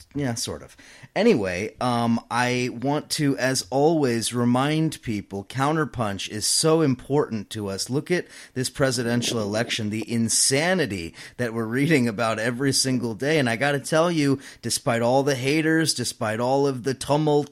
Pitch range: 115-140 Hz